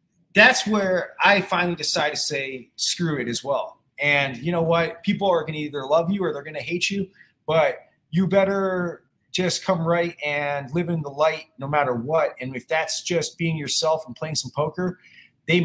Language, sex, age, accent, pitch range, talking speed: English, male, 30-49, American, 155-190 Hz, 205 wpm